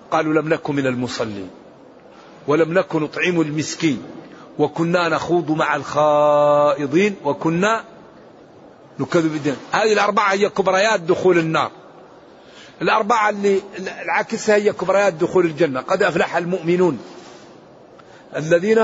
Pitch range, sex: 160-225 Hz, male